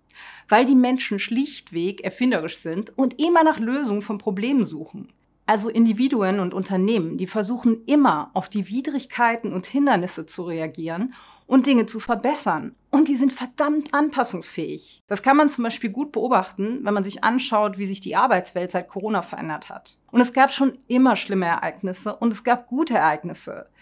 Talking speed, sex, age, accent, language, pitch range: 170 wpm, female, 40-59, German, German, 195-255 Hz